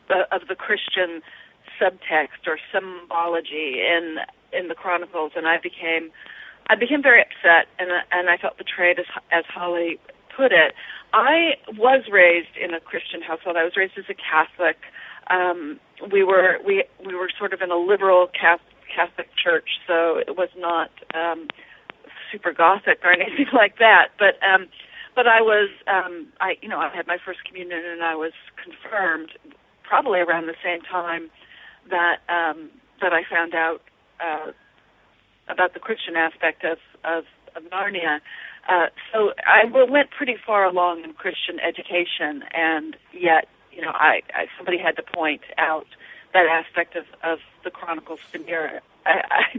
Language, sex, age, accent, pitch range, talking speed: English, female, 40-59, American, 170-200 Hz, 160 wpm